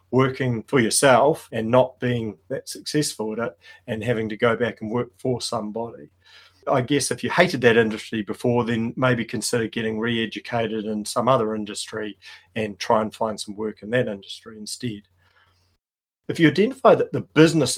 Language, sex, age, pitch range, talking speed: English, male, 40-59, 110-125 Hz, 175 wpm